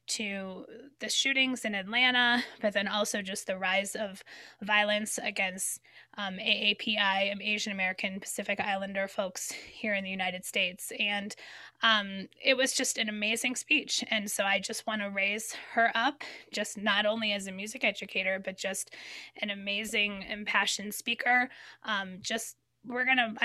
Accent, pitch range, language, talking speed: American, 200-235 Hz, English, 155 wpm